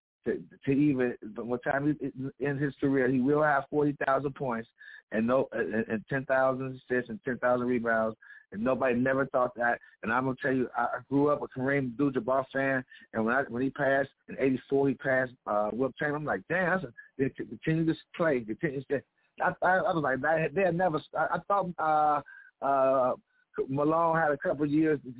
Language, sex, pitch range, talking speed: English, male, 120-145 Hz, 195 wpm